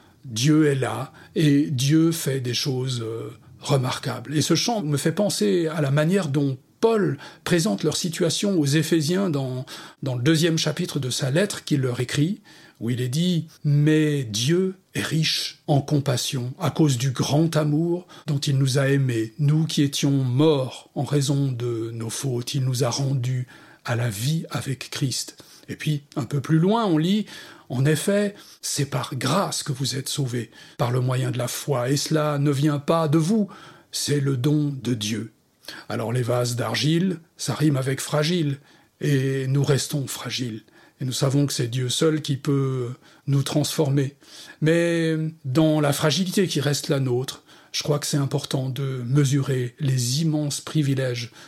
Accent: French